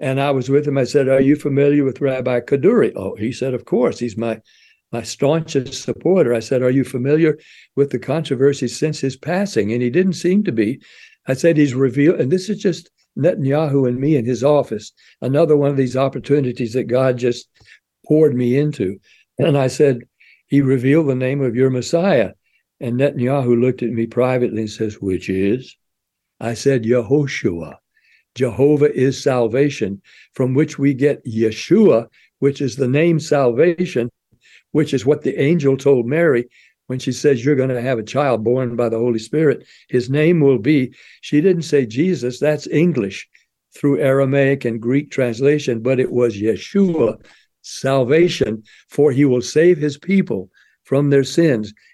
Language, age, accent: English, 60-79, American